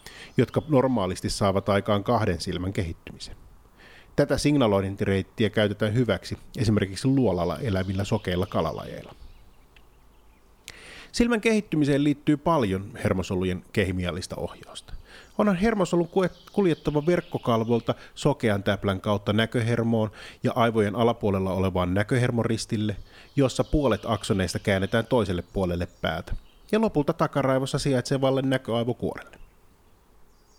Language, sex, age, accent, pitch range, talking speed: Finnish, male, 30-49, native, 95-130 Hz, 95 wpm